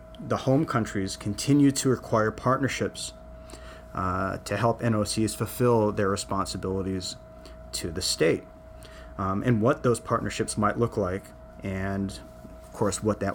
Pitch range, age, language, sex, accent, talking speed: 95-120 Hz, 30-49, English, male, American, 135 wpm